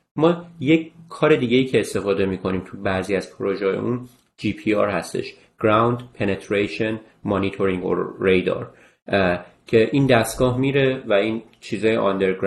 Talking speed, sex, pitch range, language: 140 wpm, male, 105-130 Hz, Persian